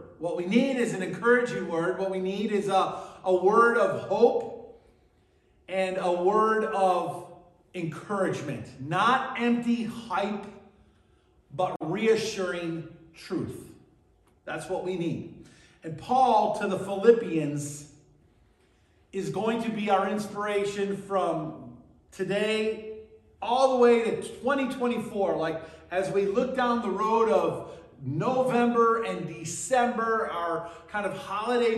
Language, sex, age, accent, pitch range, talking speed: English, male, 40-59, American, 175-220 Hz, 120 wpm